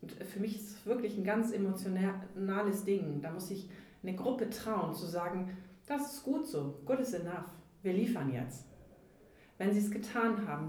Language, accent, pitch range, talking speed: German, German, 180-220 Hz, 185 wpm